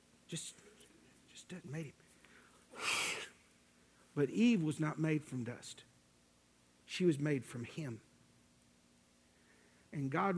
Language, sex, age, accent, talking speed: English, male, 60-79, American, 110 wpm